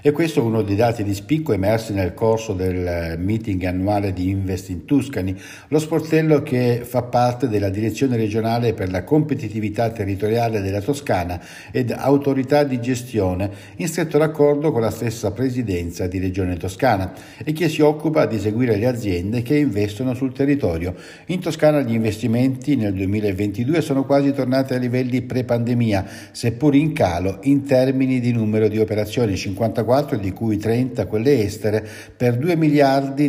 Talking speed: 160 wpm